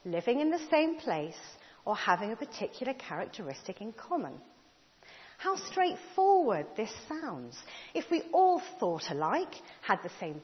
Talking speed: 140 wpm